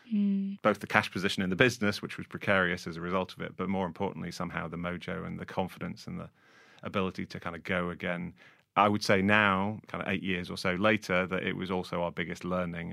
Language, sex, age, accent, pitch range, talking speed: English, male, 30-49, British, 85-95 Hz, 230 wpm